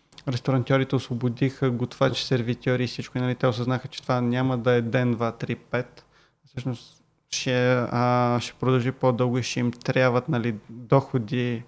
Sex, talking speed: male, 155 wpm